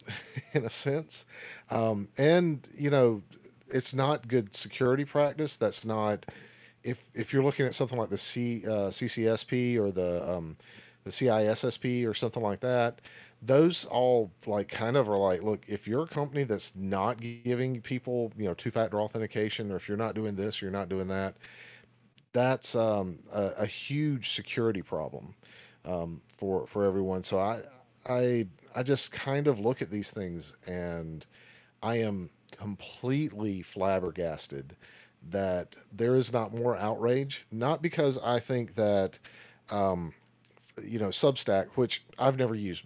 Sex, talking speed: male, 155 wpm